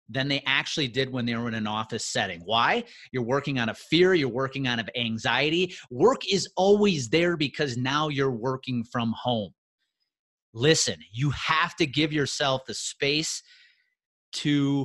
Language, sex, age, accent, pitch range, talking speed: English, male, 30-49, American, 120-155 Hz, 165 wpm